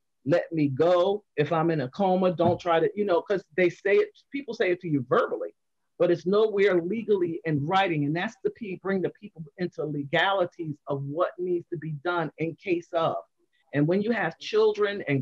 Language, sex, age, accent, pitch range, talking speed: English, male, 40-59, American, 170-225 Hz, 210 wpm